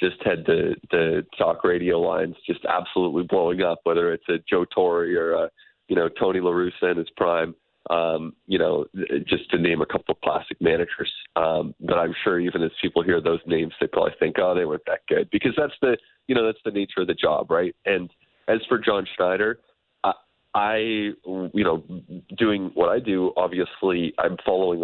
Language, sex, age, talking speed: English, male, 30-49, 200 wpm